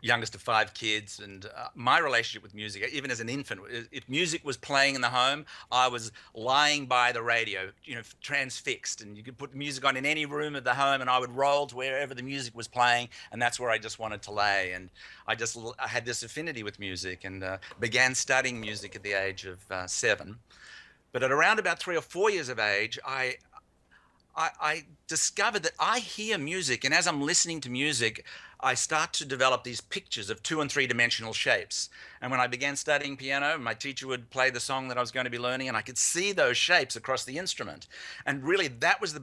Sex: male